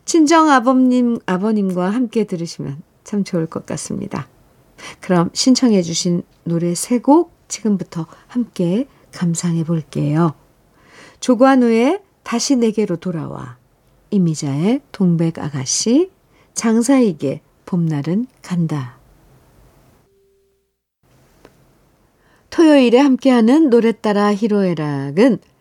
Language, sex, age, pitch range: Korean, female, 50-69, 170-250 Hz